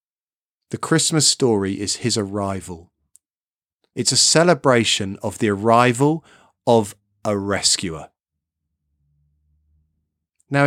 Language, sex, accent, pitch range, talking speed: English, male, British, 95-130 Hz, 90 wpm